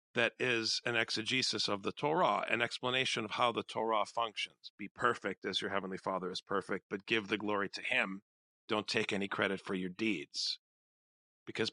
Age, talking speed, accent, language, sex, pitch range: 50-69, 185 wpm, American, English, male, 100-135 Hz